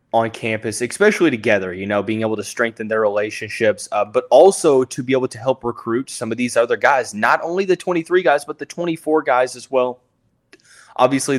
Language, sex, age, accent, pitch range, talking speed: English, male, 20-39, American, 105-120 Hz, 195 wpm